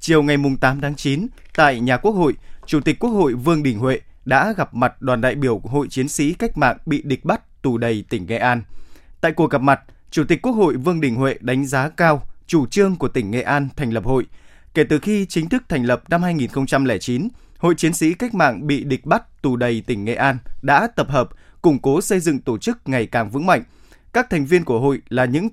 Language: Vietnamese